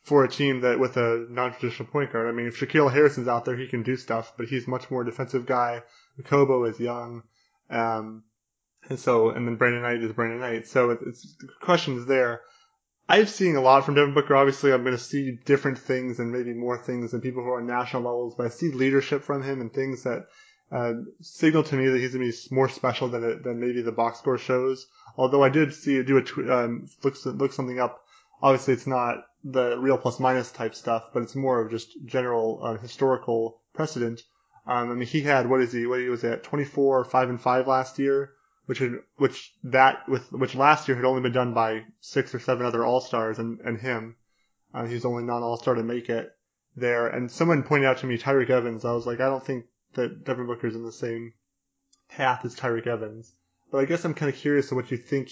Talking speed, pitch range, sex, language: 230 wpm, 120-135 Hz, male, English